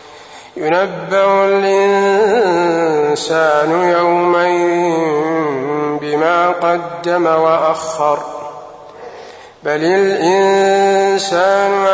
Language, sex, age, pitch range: Arabic, male, 50-69, 150-175 Hz